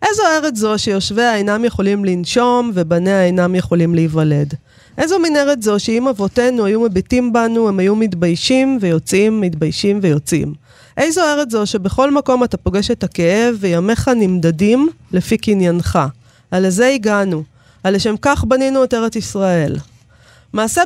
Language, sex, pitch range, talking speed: Hebrew, female, 175-235 Hz, 140 wpm